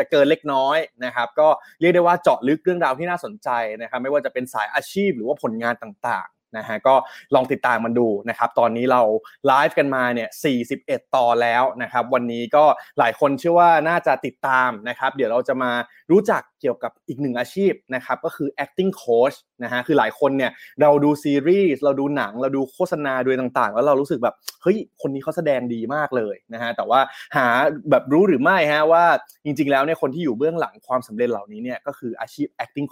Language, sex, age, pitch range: Thai, male, 20-39, 120-155 Hz